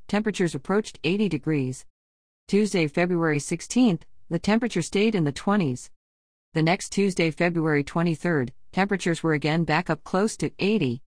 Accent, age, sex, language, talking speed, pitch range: American, 40-59, female, English, 140 wpm, 140-180 Hz